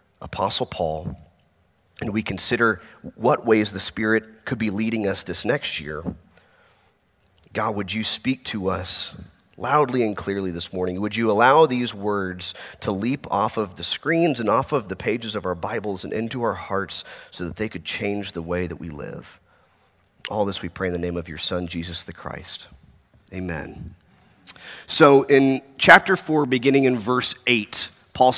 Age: 30-49